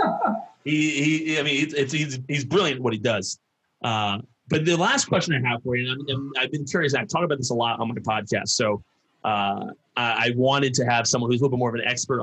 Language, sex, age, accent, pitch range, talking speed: English, male, 30-49, American, 110-135 Hz, 260 wpm